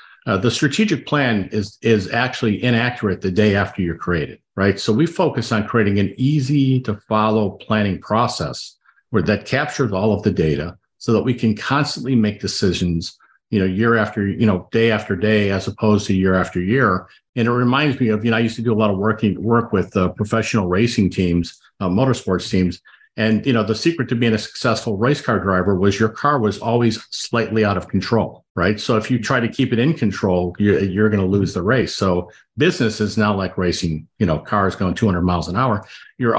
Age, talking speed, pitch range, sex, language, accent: 50-69, 215 wpm, 95-115 Hz, male, English, American